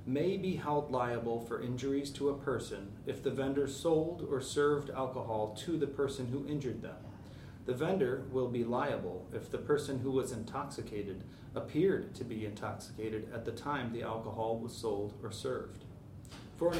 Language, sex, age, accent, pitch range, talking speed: English, male, 30-49, American, 115-140 Hz, 170 wpm